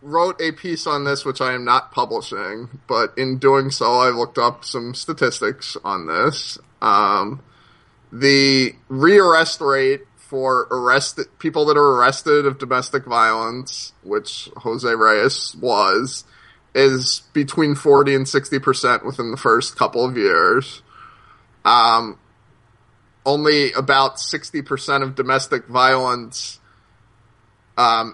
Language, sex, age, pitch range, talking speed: English, male, 20-39, 125-150 Hz, 125 wpm